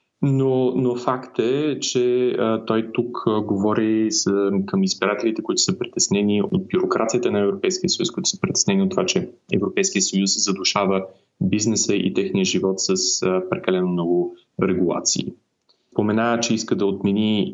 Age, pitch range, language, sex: 20-39, 95-130 Hz, Bulgarian, male